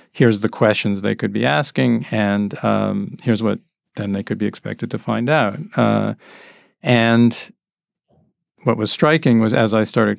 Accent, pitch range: American, 105-125 Hz